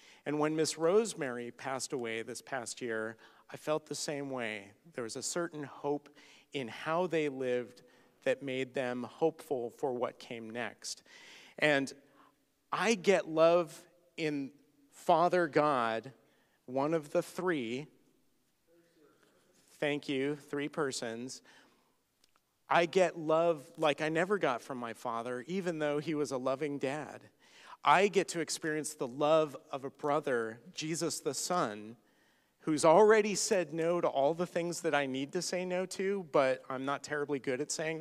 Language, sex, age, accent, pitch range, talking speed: English, male, 40-59, American, 135-170 Hz, 155 wpm